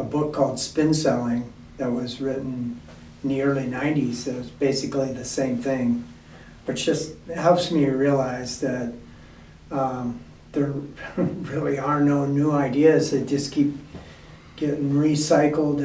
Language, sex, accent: English, male, American